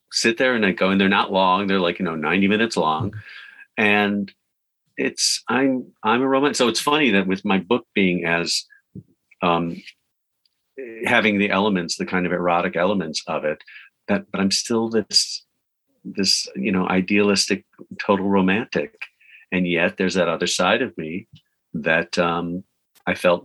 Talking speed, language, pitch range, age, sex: 165 wpm, English, 85-105 Hz, 50-69, male